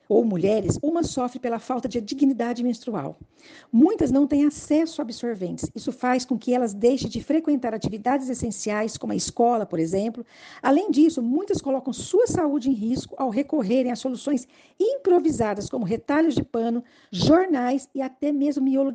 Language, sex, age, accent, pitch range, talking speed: Portuguese, female, 50-69, Brazilian, 225-280 Hz, 165 wpm